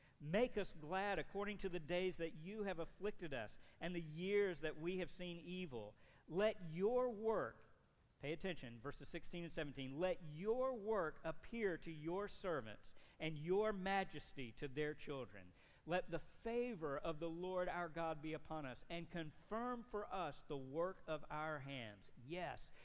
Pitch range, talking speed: 150-190 Hz, 165 wpm